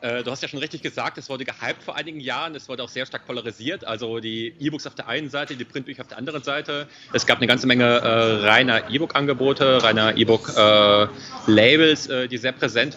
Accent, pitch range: German, 110-130 Hz